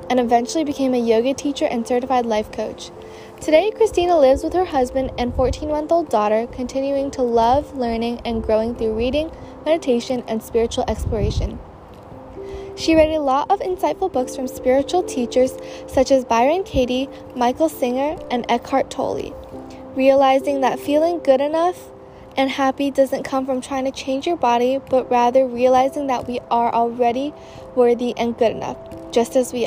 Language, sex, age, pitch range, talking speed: English, female, 10-29, 240-290 Hz, 160 wpm